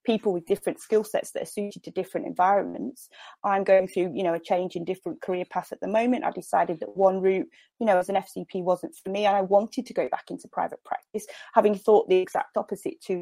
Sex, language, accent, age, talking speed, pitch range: female, English, British, 30-49, 240 wpm, 185-235 Hz